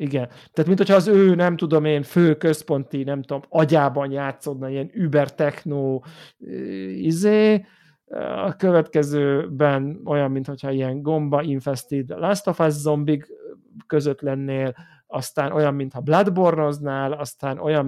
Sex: male